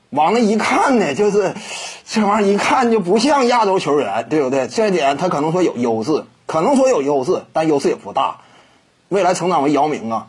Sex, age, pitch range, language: male, 30-49, 145-220 Hz, Chinese